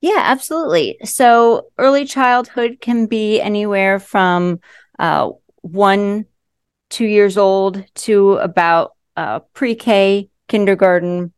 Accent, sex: American, female